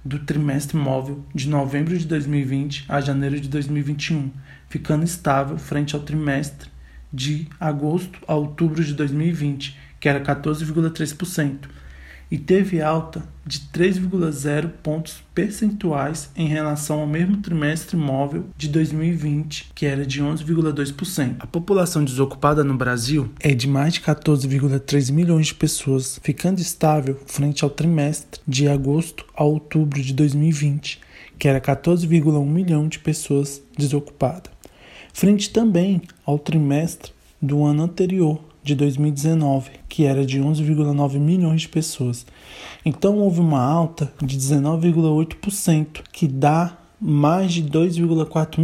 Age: 20-39